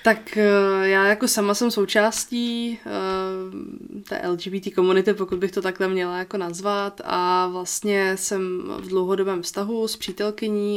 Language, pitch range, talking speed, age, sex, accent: Czech, 180-195 Hz, 135 wpm, 20-39, female, native